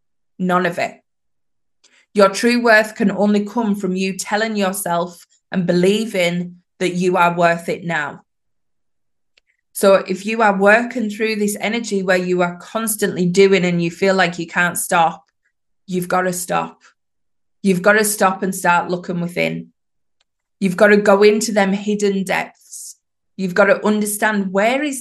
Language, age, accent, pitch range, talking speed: English, 20-39, British, 180-210 Hz, 160 wpm